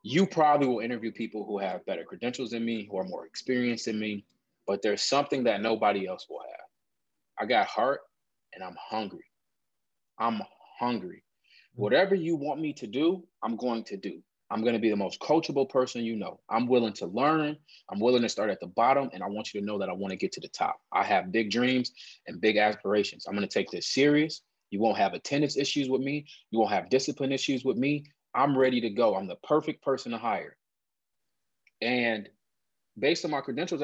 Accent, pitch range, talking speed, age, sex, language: American, 115-145 Hz, 205 wpm, 20-39, male, English